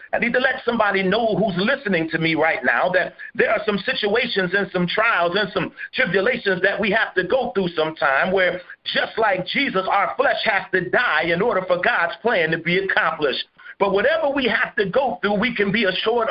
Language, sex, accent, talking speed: English, male, American, 215 wpm